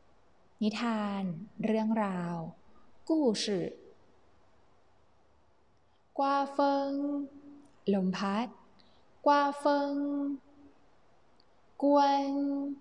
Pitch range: 195-285 Hz